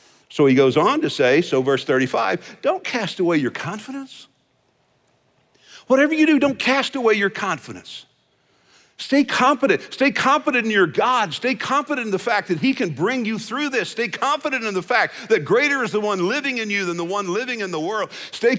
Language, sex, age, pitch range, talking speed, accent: English, male, 50-69, 170-255 Hz, 200 wpm, American